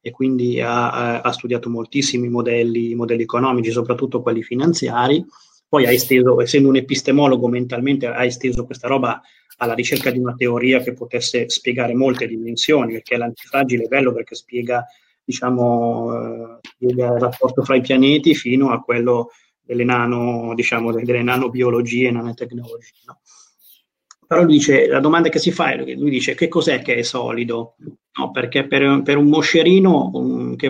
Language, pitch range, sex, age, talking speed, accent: Italian, 120-140 Hz, male, 30-49, 160 wpm, native